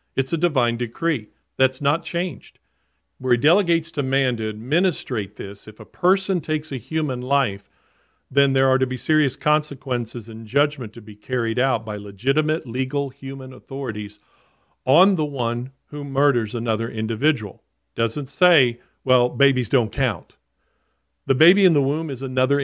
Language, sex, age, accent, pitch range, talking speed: English, male, 40-59, American, 115-155 Hz, 160 wpm